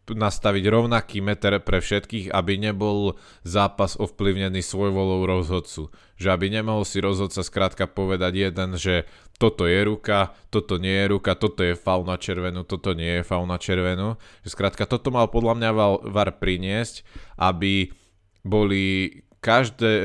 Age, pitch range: 20-39, 95-105 Hz